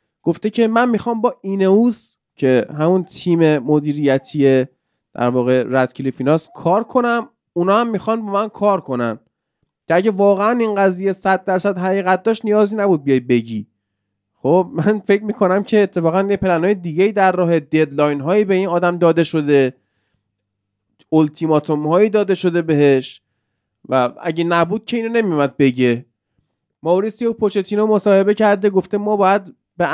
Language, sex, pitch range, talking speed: Persian, male, 150-215 Hz, 150 wpm